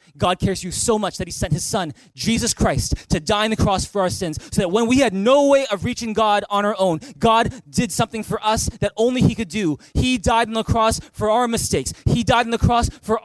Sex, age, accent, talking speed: male, 20-39, American, 260 wpm